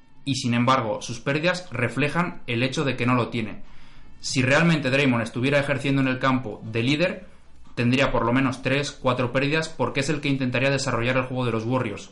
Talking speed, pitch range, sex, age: 200 wpm, 115-135 Hz, male, 20-39